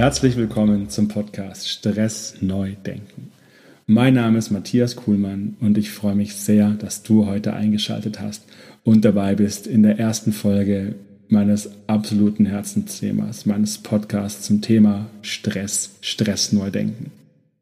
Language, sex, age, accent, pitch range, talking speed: German, male, 40-59, German, 105-115 Hz, 135 wpm